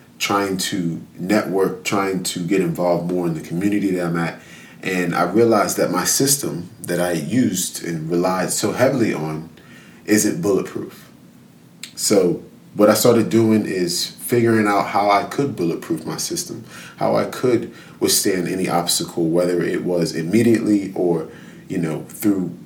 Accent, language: American, English